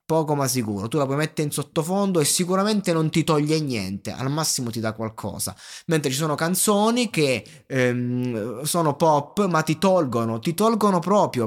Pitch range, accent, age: 130-175 Hz, native, 20-39